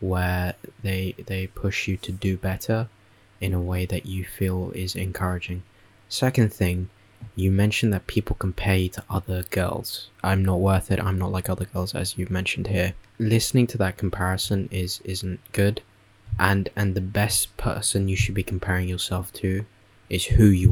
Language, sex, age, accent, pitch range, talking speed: English, male, 10-29, British, 90-105 Hz, 175 wpm